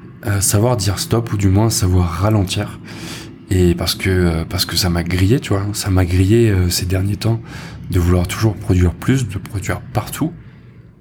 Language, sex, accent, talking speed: French, male, French, 175 wpm